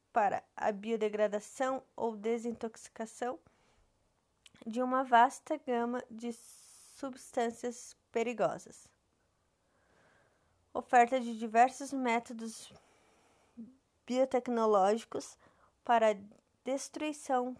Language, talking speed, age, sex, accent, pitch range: Portuguese, 65 wpm, 20-39, female, Brazilian, 215-255 Hz